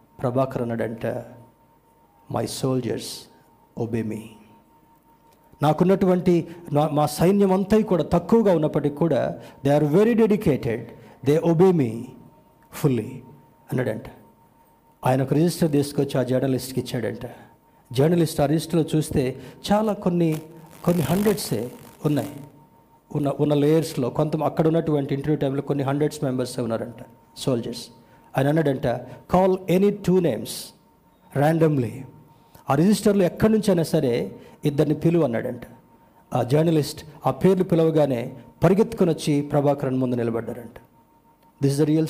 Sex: male